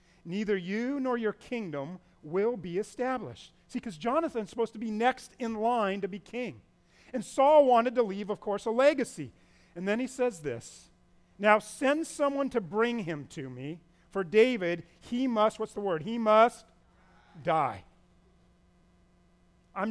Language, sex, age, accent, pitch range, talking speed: English, male, 40-59, American, 165-215 Hz, 160 wpm